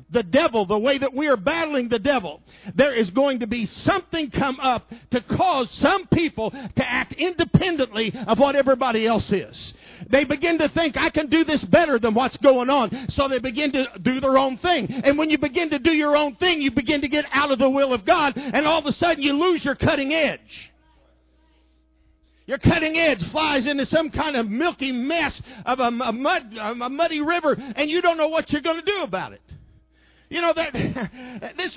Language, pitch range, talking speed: English, 245-315 Hz, 210 wpm